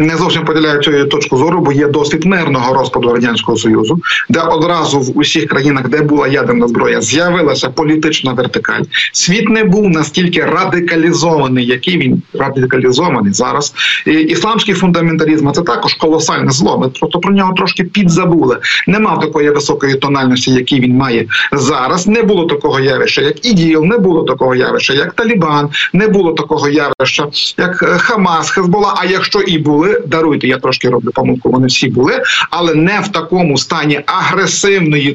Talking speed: 155 wpm